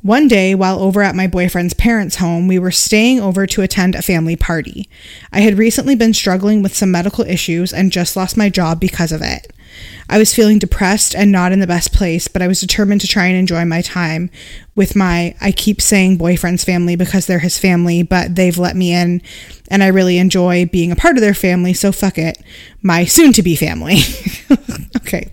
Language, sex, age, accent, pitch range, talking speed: English, female, 20-39, American, 180-215 Hz, 210 wpm